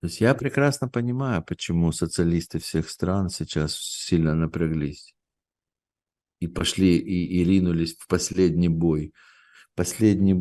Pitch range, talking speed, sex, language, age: 80-95 Hz, 120 wpm, male, Russian, 50-69